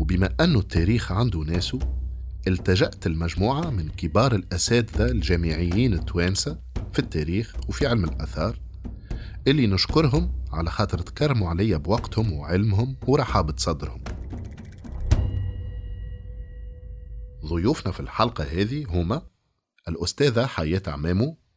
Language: French